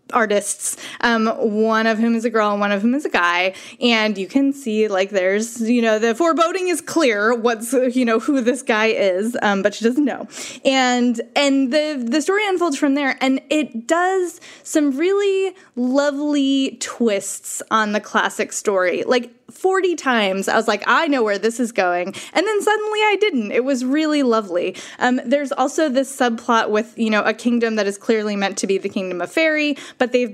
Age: 20-39